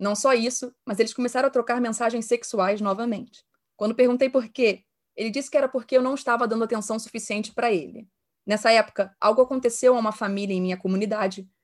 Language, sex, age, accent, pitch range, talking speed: Portuguese, female, 20-39, Brazilian, 205-260 Hz, 195 wpm